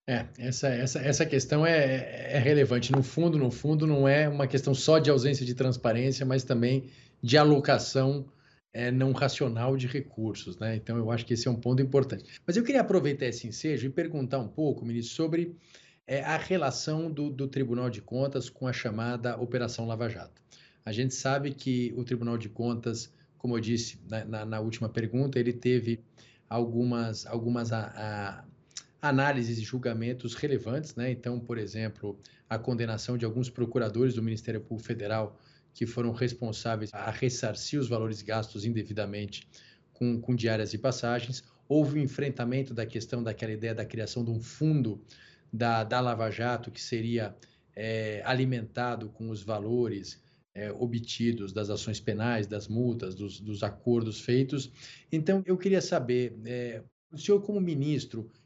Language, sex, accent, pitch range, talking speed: Portuguese, male, Brazilian, 115-135 Hz, 165 wpm